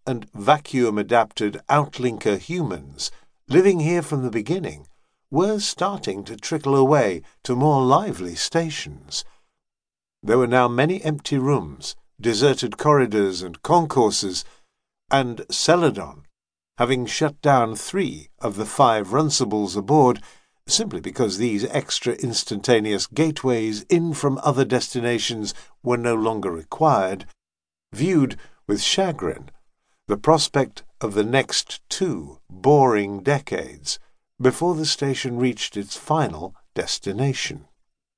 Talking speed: 110 wpm